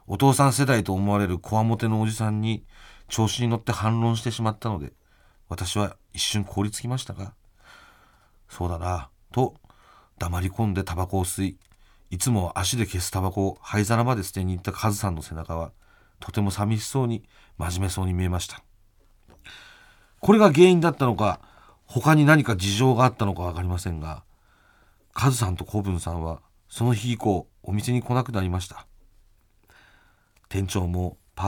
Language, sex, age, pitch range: Japanese, male, 40-59, 95-120 Hz